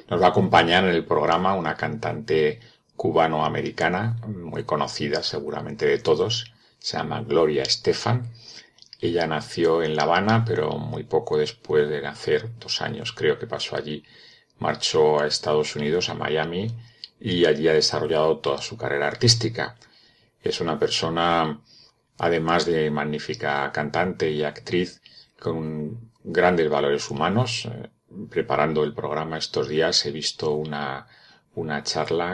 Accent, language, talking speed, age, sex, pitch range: Spanish, Spanish, 135 wpm, 40-59, male, 75-115 Hz